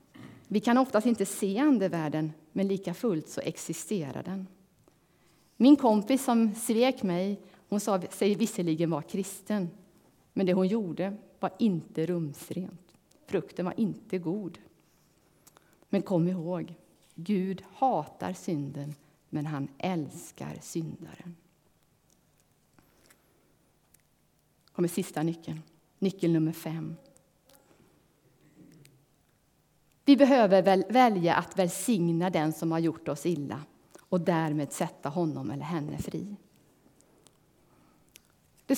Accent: native